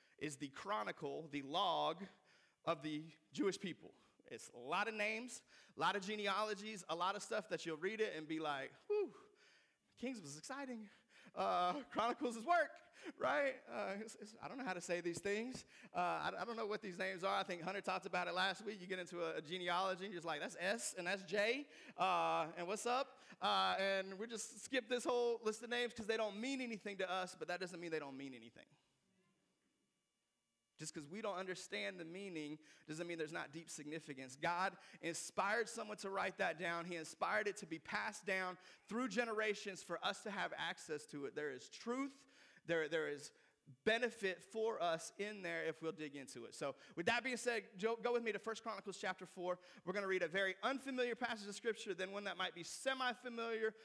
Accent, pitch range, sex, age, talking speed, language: American, 170-225 Hz, male, 30-49, 210 wpm, English